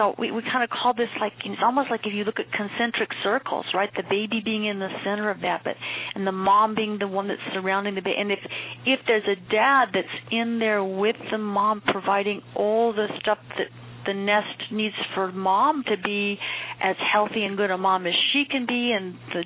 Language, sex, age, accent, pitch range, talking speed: English, female, 40-59, American, 200-250 Hz, 225 wpm